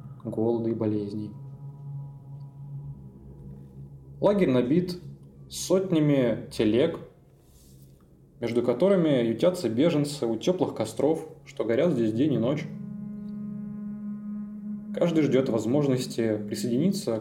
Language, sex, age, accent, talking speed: Russian, male, 20-39, native, 85 wpm